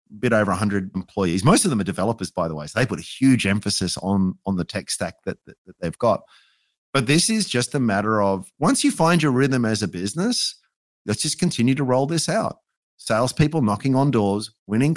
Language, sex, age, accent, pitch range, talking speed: English, male, 30-49, Australian, 105-140 Hz, 225 wpm